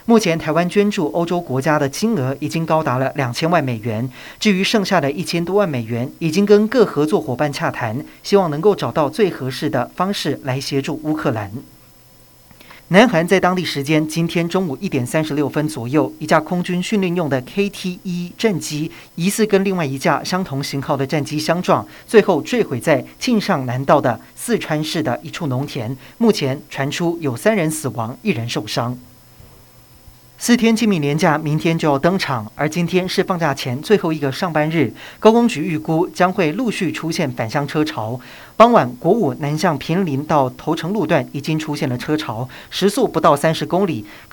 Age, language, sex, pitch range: 40-59, Chinese, male, 135-185 Hz